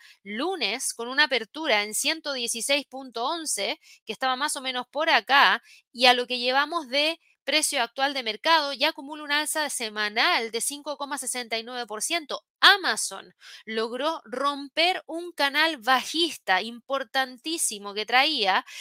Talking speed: 125 wpm